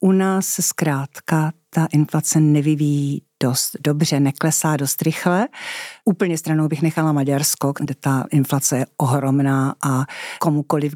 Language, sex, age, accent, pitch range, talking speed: Czech, female, 50-69, native, 140-160 Hz, 125 wpm